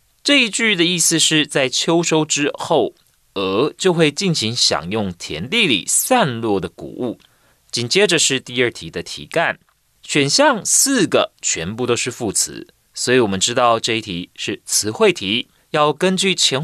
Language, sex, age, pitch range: Chinese, male, 30-49, 110-175 Hz